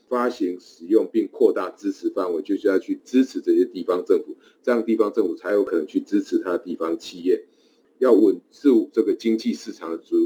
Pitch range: 335-430 Hz